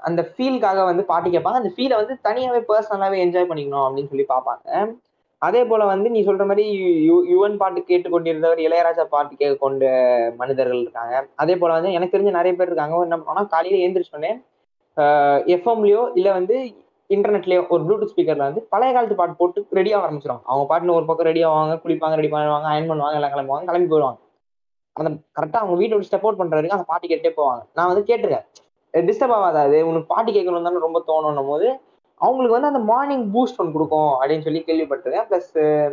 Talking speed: 165 wpm